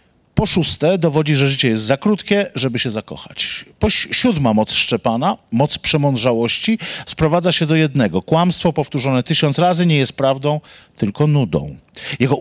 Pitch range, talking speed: 125-170 Hz, 150 wpm